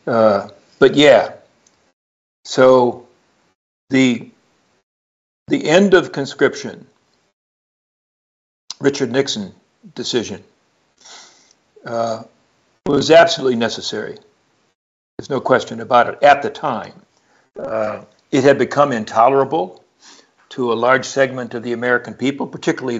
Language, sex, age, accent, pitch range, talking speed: English, male, 60-79, American, 120-155 Hz, 100 wpm